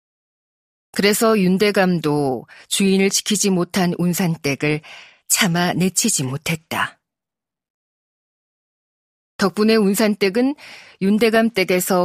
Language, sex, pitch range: Korean, female, 175-225 Hz